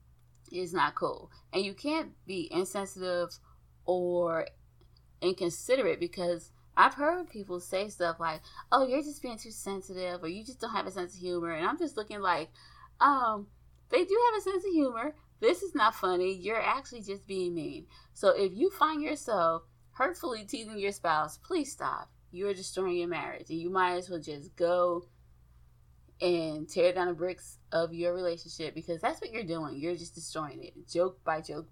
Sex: female